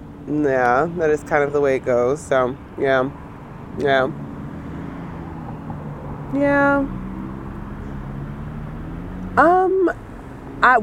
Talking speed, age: 85 wpm, 20-39